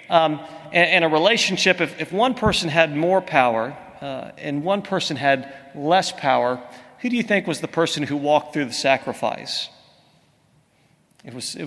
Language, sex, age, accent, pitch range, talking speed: English, male, 40-59, American, 145-190 Hz, 160 wpm